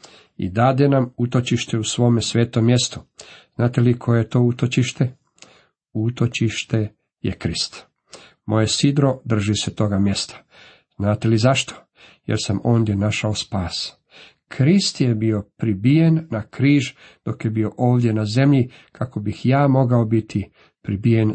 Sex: male